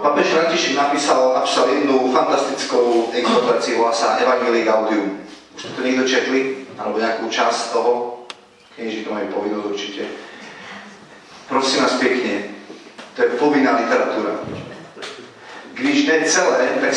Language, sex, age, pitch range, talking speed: Slovak, male, 40-59, 125-160 Hz, 125 wpm